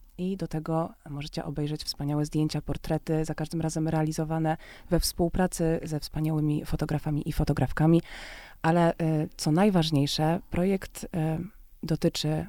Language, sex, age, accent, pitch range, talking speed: Polish, female, 30-49, native, 155-180 Hz, 115 wpm